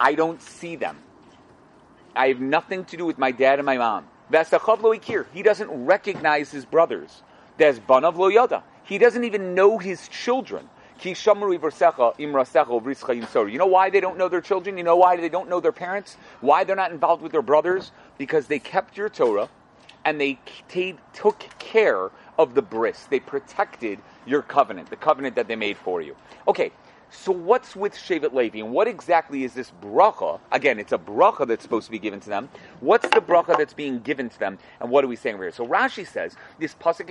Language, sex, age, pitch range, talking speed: English, male, 40-59, 135-205 Hz, 190 wpm